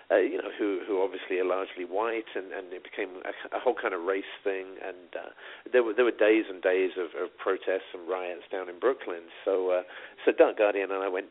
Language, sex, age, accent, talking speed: English, male, 50-69, British, 240 wpm